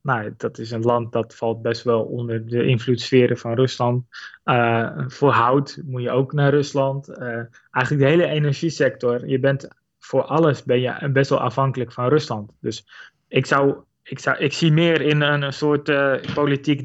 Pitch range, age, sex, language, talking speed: 125-145 Hz, 20-39, male, Dutch, 180 wpm